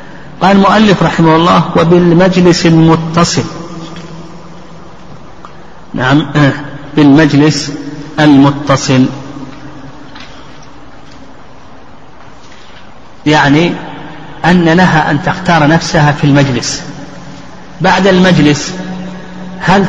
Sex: male